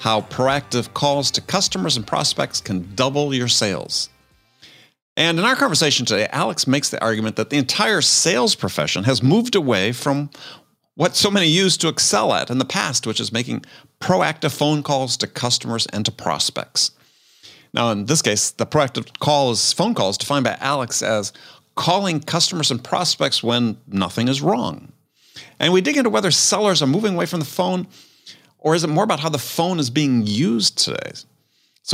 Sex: male